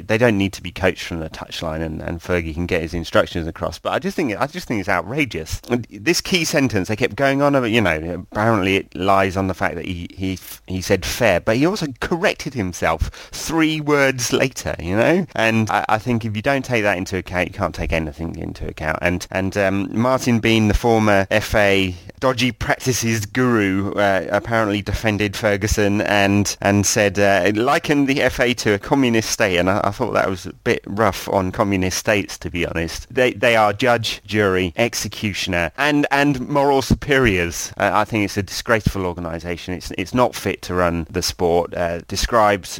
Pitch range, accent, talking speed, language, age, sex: 90-120 Hz, British, 200 wpm, English, 30-49, male